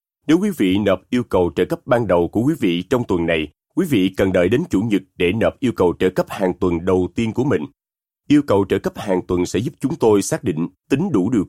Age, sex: 30-49, male